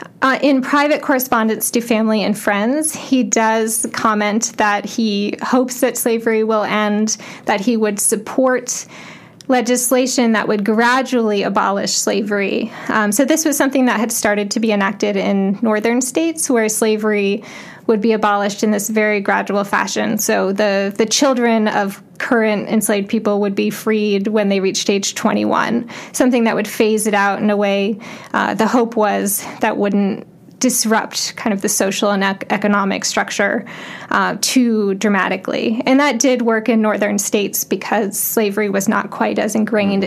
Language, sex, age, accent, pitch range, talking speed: English, female, 20-39, American, 205-245 Hz, 165 wpm